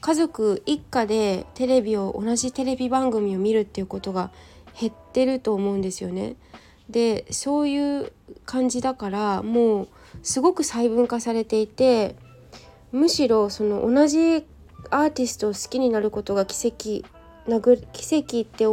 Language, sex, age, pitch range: Japanese, female, 20-39, 210-265 Hz